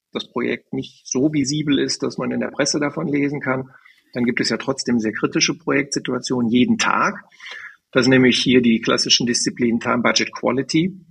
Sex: male